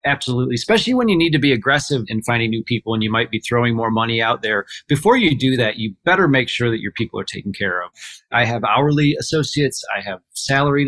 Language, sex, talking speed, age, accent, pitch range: English, male, 235 wpm, 30-49, American, 115-140 Hz